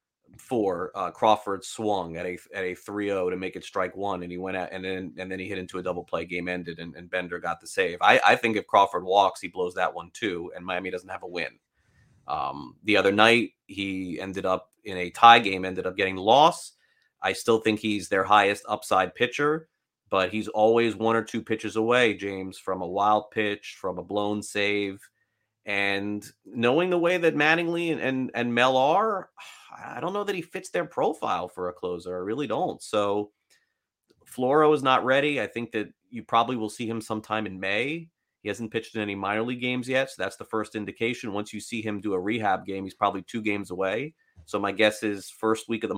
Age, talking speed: 30-49, 220 wpm